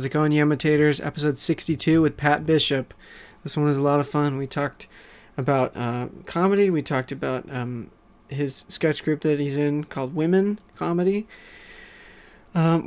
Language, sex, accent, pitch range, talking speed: English, male, American, 130-160 Hz, 165 wpm